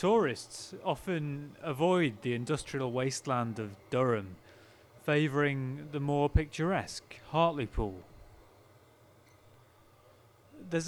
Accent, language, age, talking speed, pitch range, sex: British, English, 30-49, 75 wpm, 115-155 Hz, male